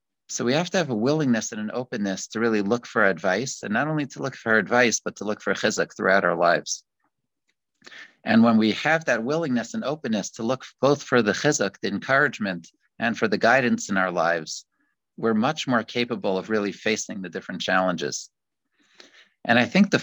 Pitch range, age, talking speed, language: 105-130 Hz, 50-69, 200 wpm, English